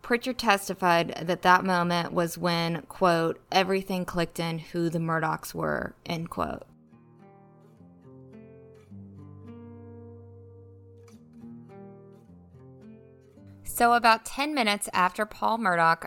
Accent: American